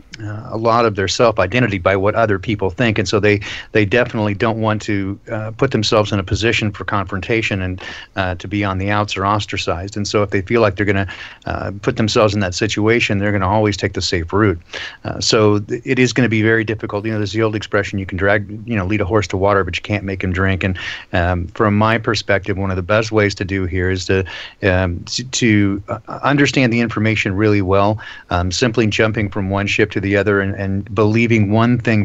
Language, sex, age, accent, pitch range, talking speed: English, male, 40-59, American, 95-110 Hz, 240 wpm